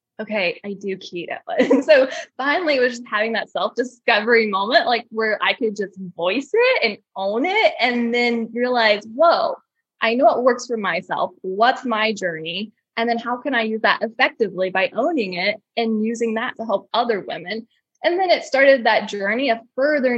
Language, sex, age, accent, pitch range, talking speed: English, female, 10-29, American, 200-265 Hz, 185 wpm